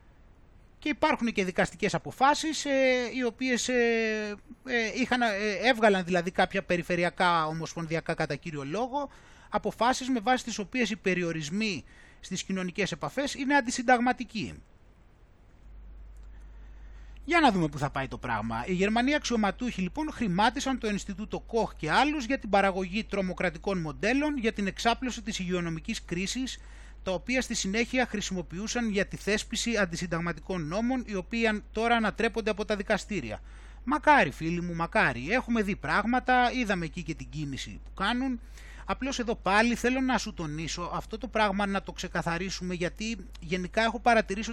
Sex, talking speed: male, 150 wpm